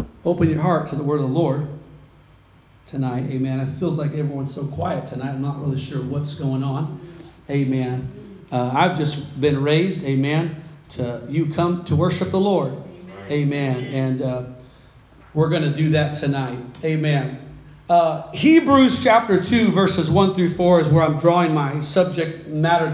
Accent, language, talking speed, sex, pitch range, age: American, English, 165 wpm, male, 150-210 Hz, 40-59